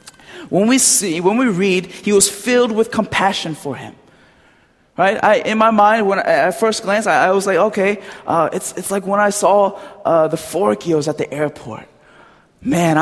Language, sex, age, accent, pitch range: Korean, male, 20-39, American, 150-215 Hz